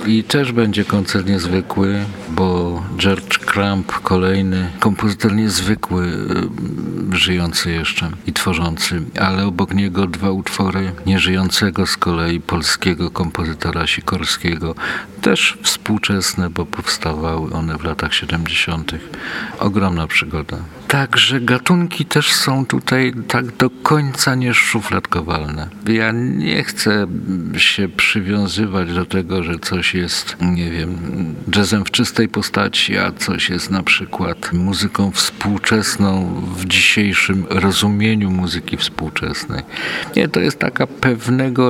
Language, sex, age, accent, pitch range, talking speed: Polish, male, 50-69, native, 85-105 Hz, 110 wpm